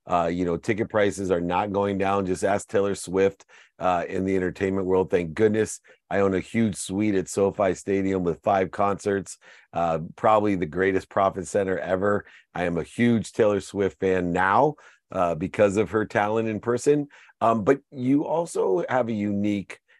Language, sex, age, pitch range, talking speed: English, male, 40-59, 95-110 Hz, 180 wpm